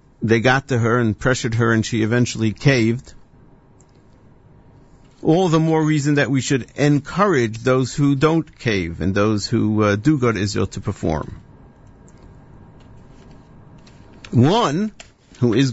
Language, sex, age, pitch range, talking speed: English, male, 50-69, 105-135 Hz, 135 wpm